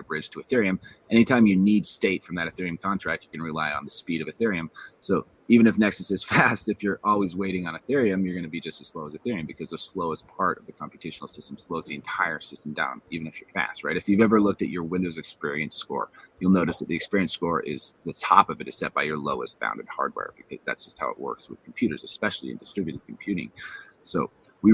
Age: 30-49